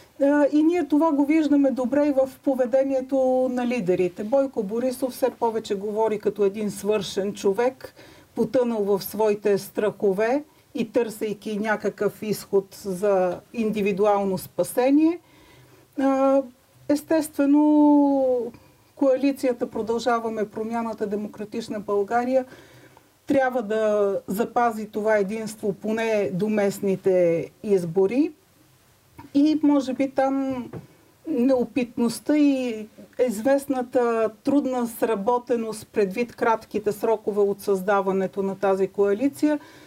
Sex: female